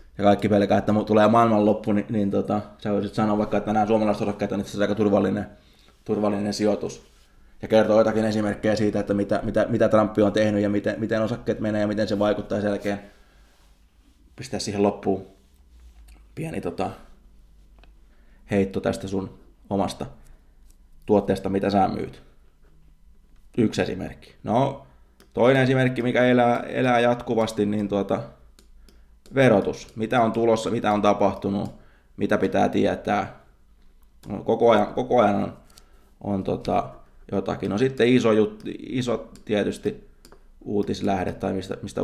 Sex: male